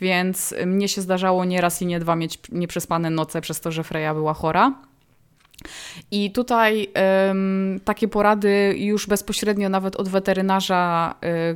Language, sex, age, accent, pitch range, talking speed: Polish, female, 20-39, native, 175-210 Hz, 140 wpm